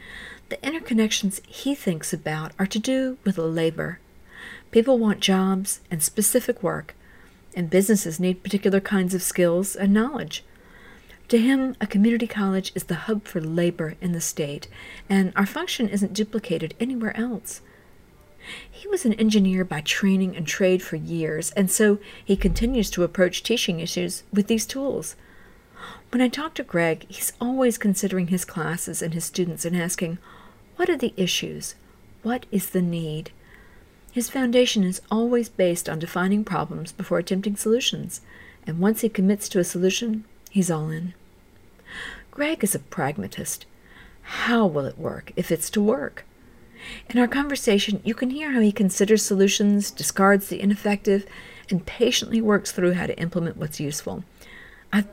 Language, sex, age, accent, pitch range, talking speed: English, female, 50-69, American, 175-225 Hz, 160 wpm